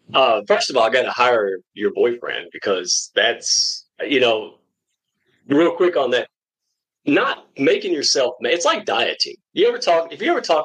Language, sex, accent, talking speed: English, male, American, 175 wpm